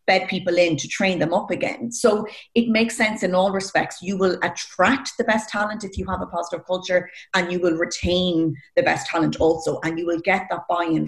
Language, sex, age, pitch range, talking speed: English, female, 30-49, 165-215 Hz, 220 wpm